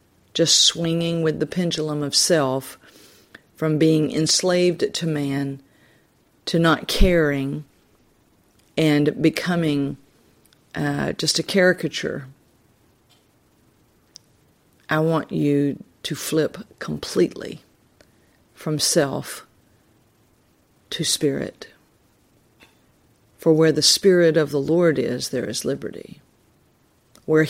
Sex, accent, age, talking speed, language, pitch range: female, American, 50-69, 95 wpm, English, 135-165 Hz